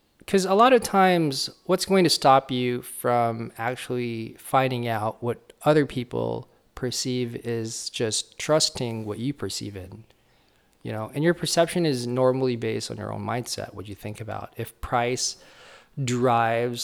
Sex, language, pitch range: male, English, 110-130 Hz